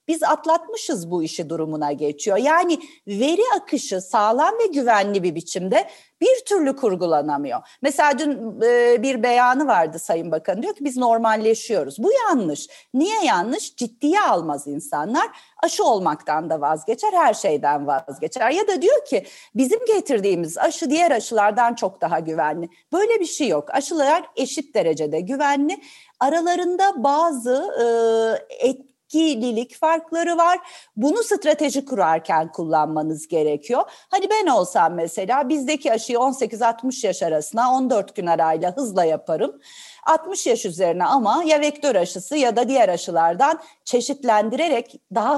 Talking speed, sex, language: 130 wpm, female, Turkish